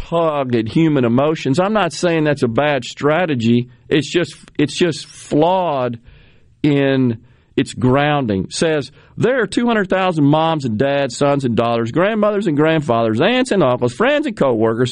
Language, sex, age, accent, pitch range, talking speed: English, male, 50-69, American, 135-210 Hz, 155 wpm